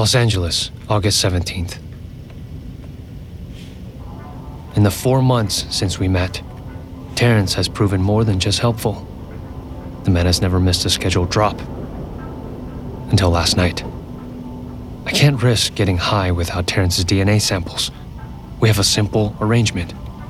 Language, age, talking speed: English, 30-49, 125 wpm